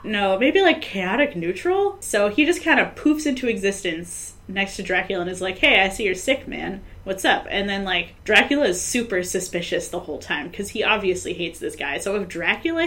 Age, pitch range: 10-29, 180-235 Hz